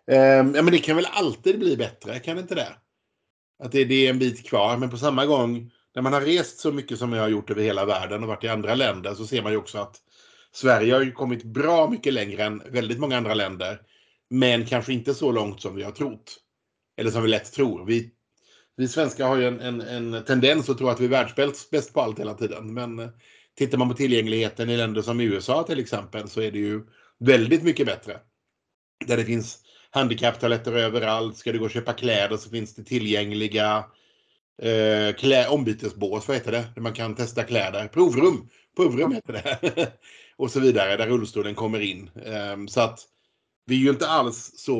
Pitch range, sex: 110-135 Hz, male